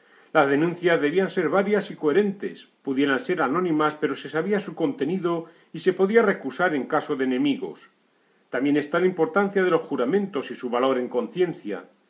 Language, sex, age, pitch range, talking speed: Spanish, male, 40-59, 135-185 Hz, 175 wpm